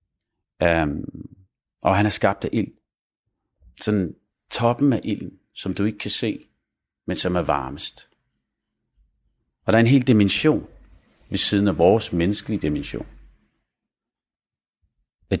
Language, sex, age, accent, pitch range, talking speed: Danish, male, 40-59, native, 85-105 Hz, 130 wpm